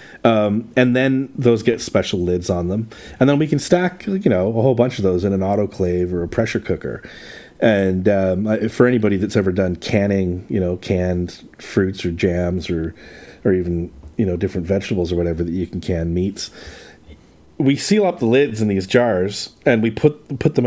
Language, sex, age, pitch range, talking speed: English, male, 40-59, 95-120 Hz, 200 wpm